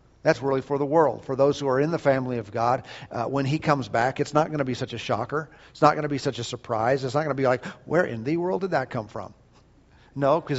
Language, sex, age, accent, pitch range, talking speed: English, male, 50-69, American, 125-145 Hz, 290 wpm